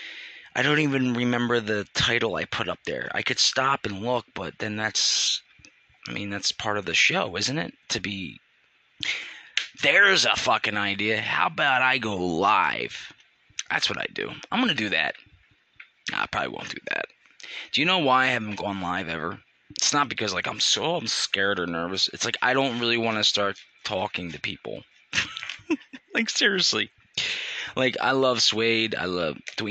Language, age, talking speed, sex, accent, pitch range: English, 20-39, 185 wpm, male, American, 100-135 Hz